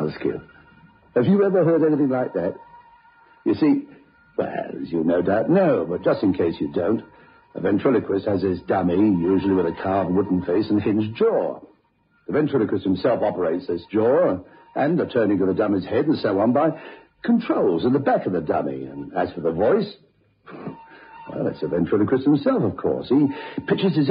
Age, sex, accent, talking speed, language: 60-79, male, British, 185 wpm, English